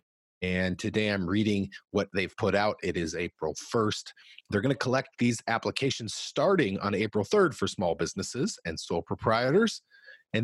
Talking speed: 160 wpm